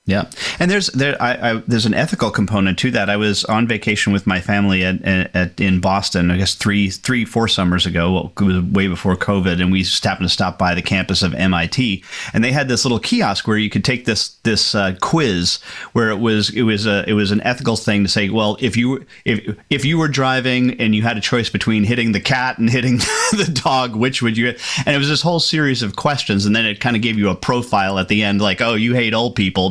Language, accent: English, American